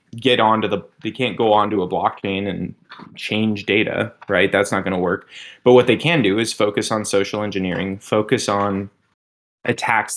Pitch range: 95-115 Hz